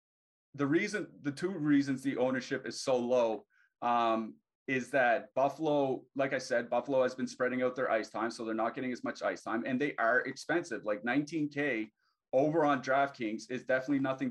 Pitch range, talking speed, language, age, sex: 115-145 Hz, 190 wpm, English, 30-49, male